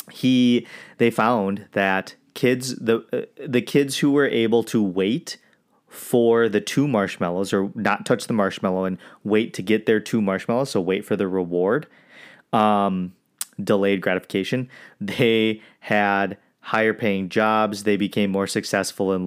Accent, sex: American, male